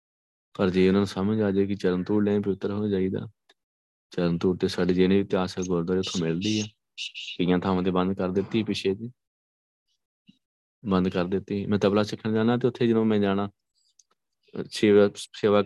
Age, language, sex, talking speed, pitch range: 20-39, Punjabi, male, 135 wpm, 90-105 Hz